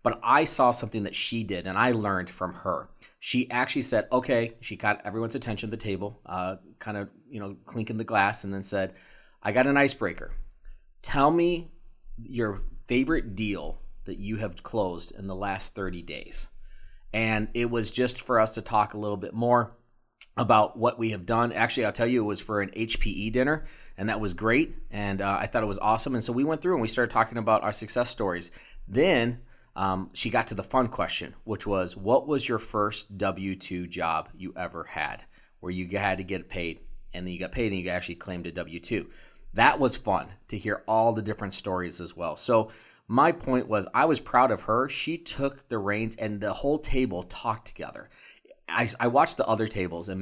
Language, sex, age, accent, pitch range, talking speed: English, male, 30-49, American, 95-120 Hz, 210 wpm